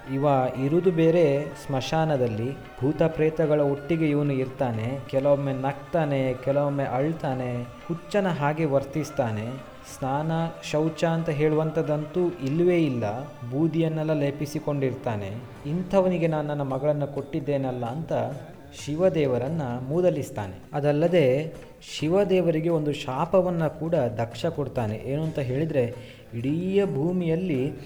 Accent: native